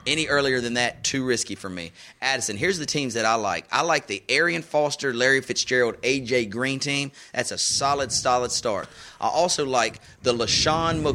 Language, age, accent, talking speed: English, 30-49, American, 190 wpm